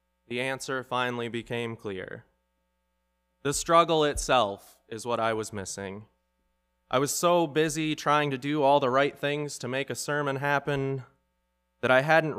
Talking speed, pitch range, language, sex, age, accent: 155 wpm, 105-140 Hz, English, male, 20-39, American